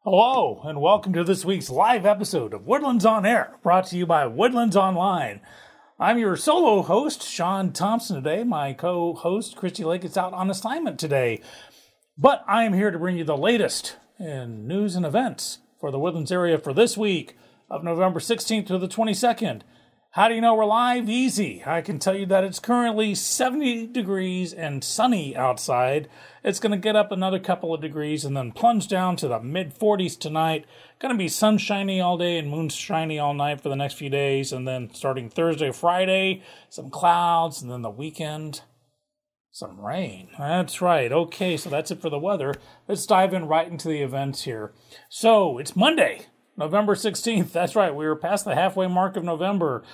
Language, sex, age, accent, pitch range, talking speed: English, male, 40-59, American, 155-205 Hz, 185 wpm